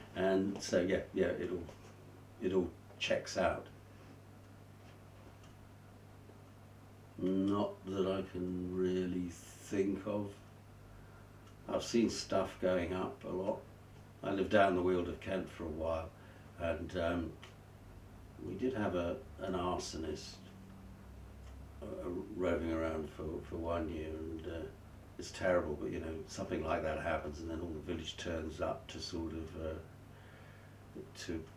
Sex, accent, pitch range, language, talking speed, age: male, British, 85-100 Hz, English, 140 wpm, 60-79